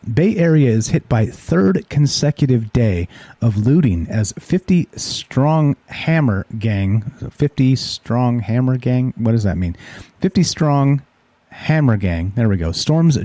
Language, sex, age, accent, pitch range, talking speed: English, male, 40-59, American, 100-130 Hz, 140 wpm